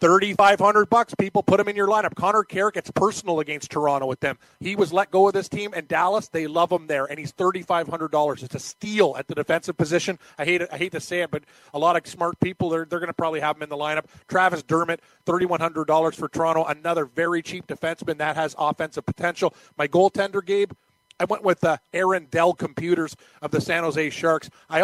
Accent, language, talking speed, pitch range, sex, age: American, English, 220 wpm, 155-185 Hz, male, 30-49